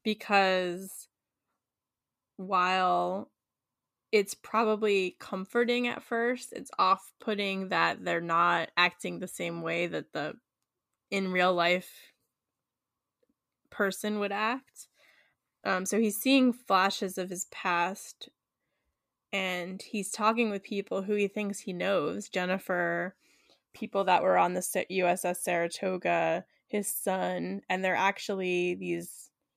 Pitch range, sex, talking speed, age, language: 180-215 Hz, female, 110 wpm, 10-29, English